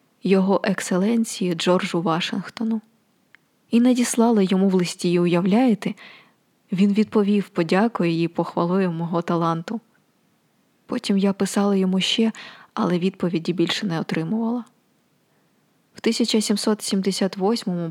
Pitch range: 175-215 Hz